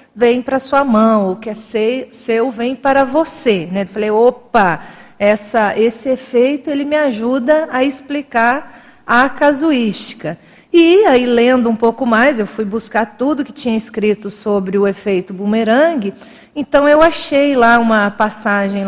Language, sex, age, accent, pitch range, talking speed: Portuguese, female, 40-59, Brazilian, 220-275 Hz, 145 wpm